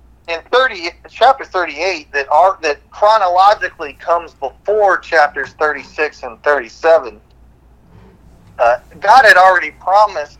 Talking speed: 110 wpm